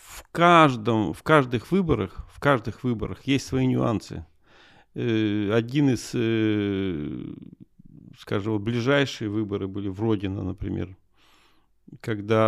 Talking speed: 100 wpm